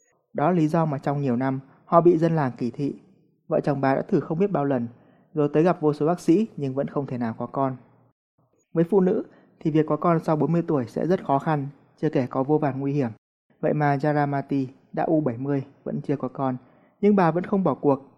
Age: 20-39